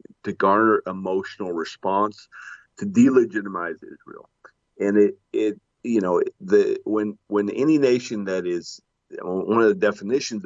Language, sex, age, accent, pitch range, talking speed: English, male, 50-69, American, 95-135 Hz, 130 wpm